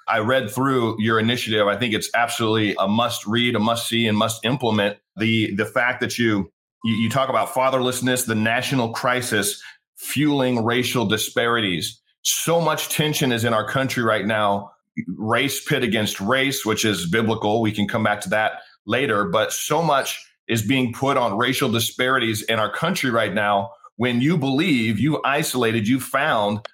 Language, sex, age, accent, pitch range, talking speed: English, male, 30-49, American, 110-135 Hz, 175 wpm